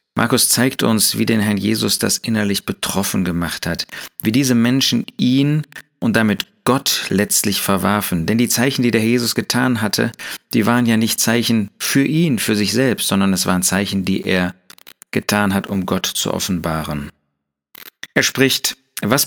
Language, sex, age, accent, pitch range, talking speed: German, male, 40-59, German, 100-130 Hz, 170 wpm